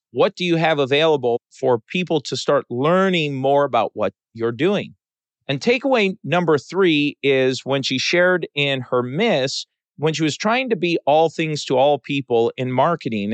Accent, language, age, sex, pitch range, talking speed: American, English, 40-59, male, 125-170 Hz, 175 wpm